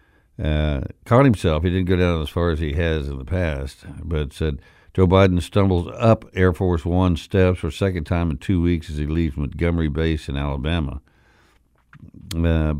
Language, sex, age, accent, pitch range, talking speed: English, male, 60-79, American, 80-100 Hz, 190 wpm